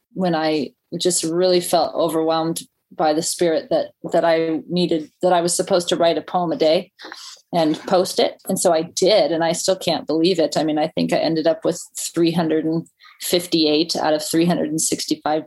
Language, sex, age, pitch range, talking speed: English, female, 30-49, 160-185 Hz, 185 wpm